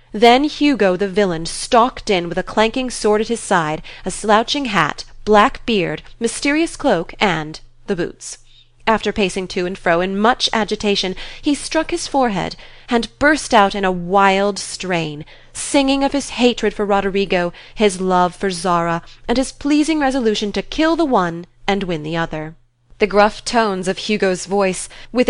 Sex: female